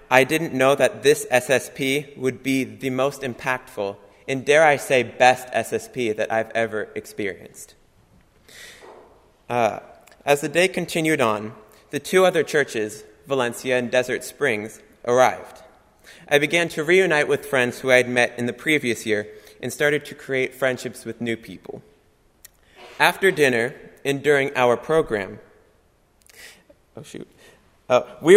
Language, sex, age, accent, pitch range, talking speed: English, male, 20-39, American, 115-150 Hz, 140 wpm